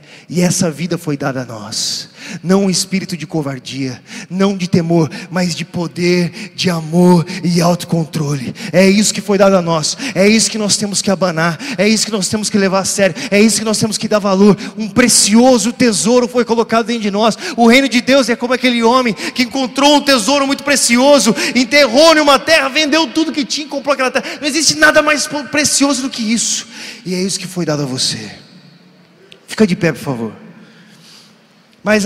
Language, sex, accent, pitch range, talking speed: Portuguese, male, Brazilian, 195-295 Hz, 200 wpm